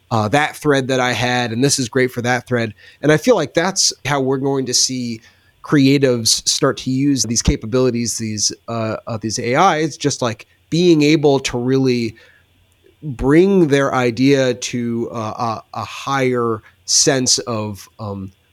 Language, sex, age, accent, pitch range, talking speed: English, male, 30-49, American, 125-160 Hz, 160 wpm